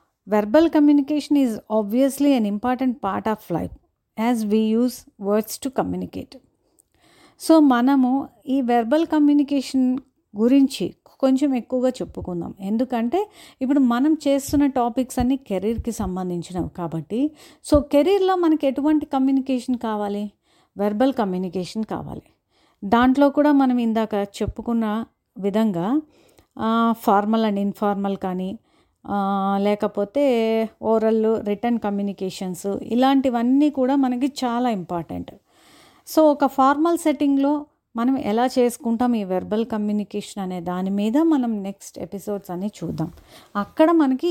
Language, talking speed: Telugu, 115 wpm